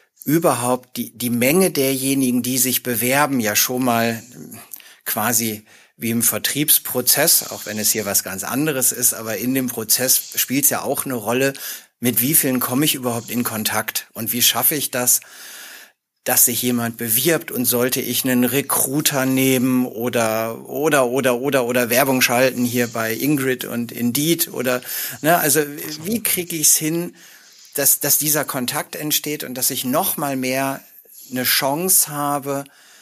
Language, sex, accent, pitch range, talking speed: German, male, German, 120-145 Hz, 165 wpm